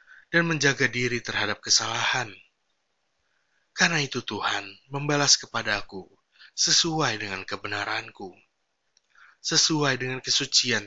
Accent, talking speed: native, 90 wpm